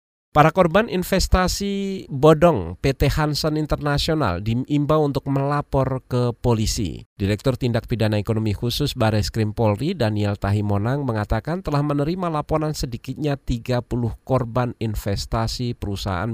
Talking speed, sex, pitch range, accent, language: 110 wpm, male, 100-140 Hz, native, Indonesian